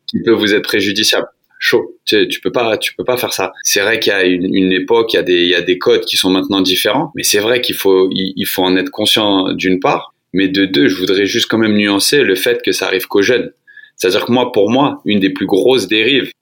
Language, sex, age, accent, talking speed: French, male, 30-49, French, 280 wpm